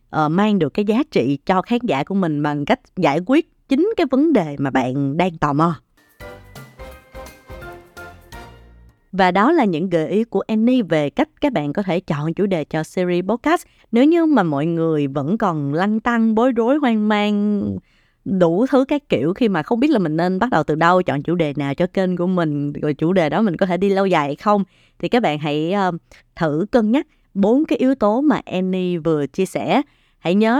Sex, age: female, 20-39